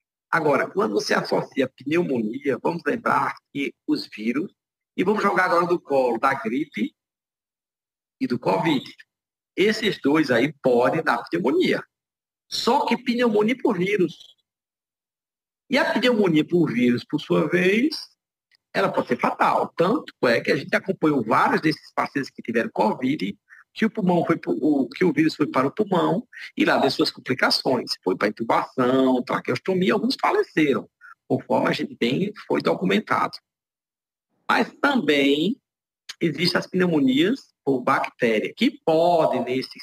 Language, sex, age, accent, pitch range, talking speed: Portuguese, male, 50-69, Brazilian, 135-210 Hz, 145 wpm